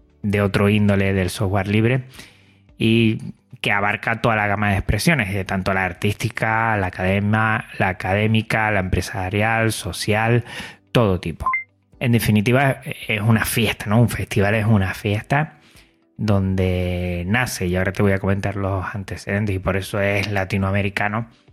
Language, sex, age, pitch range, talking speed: Spanish, male, 30-49, 95-115 Hz, 150 wpm